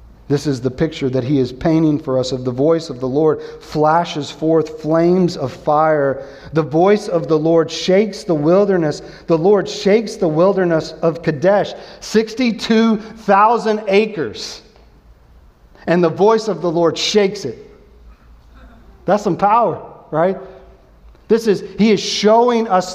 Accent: American